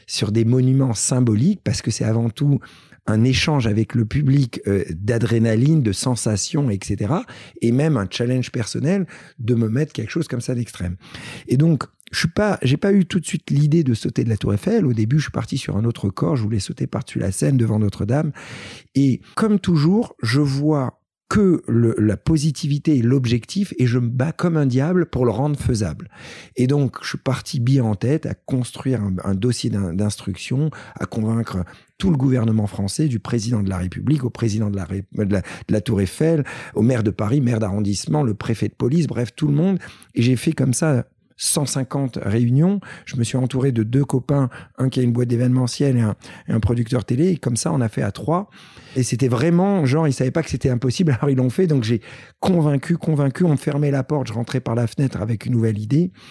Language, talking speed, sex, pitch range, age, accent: French, 220 wpm, male, 115-145 Hz, 50-69, French